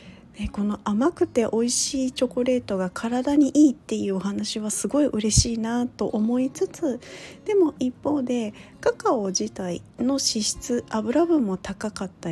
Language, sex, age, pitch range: Japanese, female, 40-59, 180-255 Hz